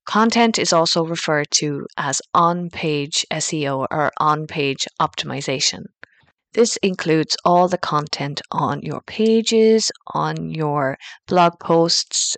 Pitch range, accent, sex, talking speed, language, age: 150-175 Hz, Irish, female, 110 wpm, English, 30-49